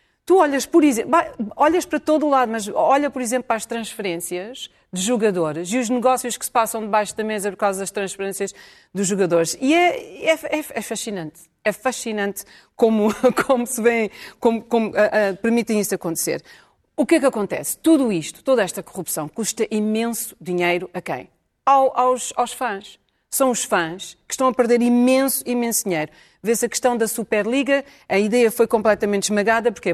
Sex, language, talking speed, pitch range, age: female, Portuguese, 175 wpm, 200-250 Hz, 40-59